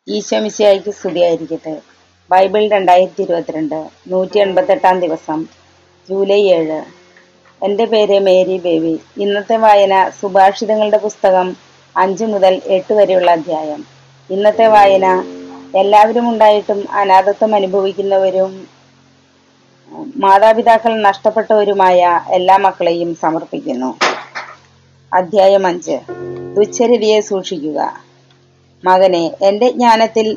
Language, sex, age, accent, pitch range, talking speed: Malayalam, female, 20-39, native, 180-215 Hz, 85 wpm